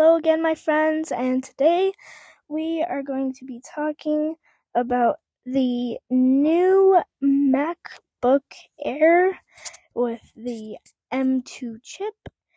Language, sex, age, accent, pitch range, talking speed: English, female, 10-29, American, 250-310 Hz, 100 wpm